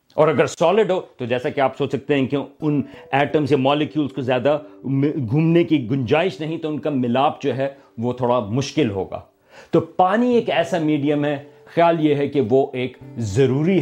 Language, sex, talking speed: Urdu, male, 195 wpm